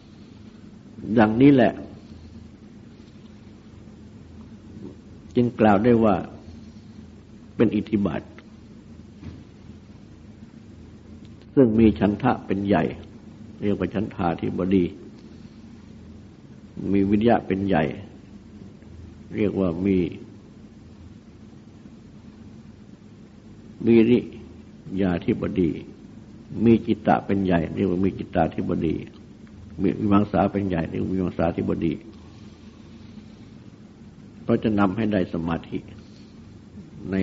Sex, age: male, 60-79